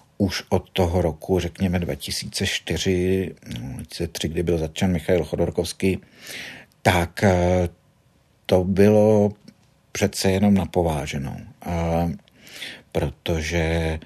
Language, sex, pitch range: Czech, male, 80-95 Hz